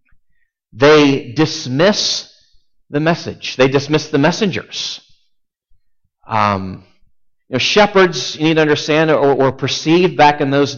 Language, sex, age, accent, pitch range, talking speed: English, male, 40-59, American, 150-215 Hz, 105 wpm